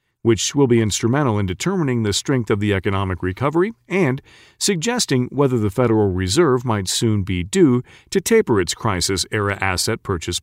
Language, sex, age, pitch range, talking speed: English, male, 40-59, 100-130 Hz, 160 wpm